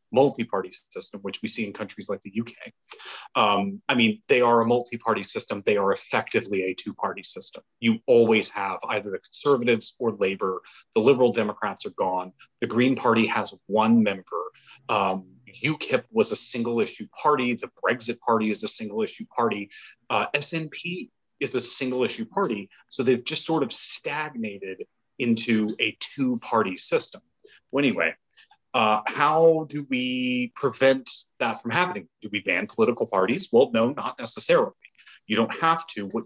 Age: 30-49